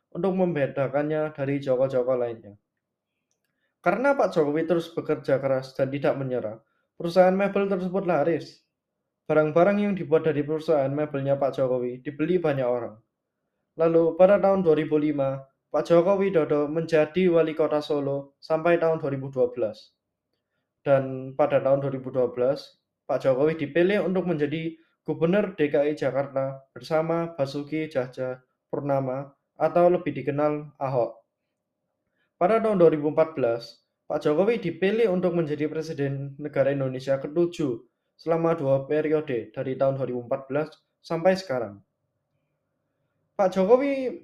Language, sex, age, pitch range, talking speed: English, male, 20-39, 135-170 Hz, 115 wpm